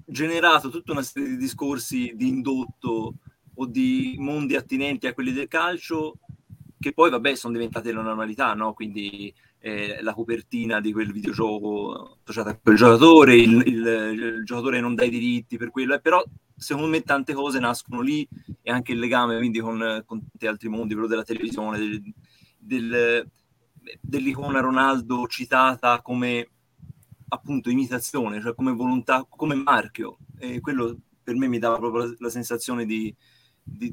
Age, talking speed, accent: 30-49, 155 wpm, native